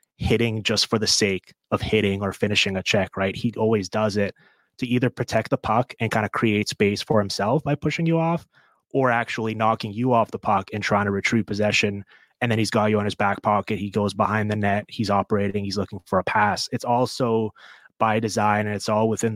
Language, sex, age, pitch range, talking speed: English, male, 20-39, 100-110 Hz, 225 wpm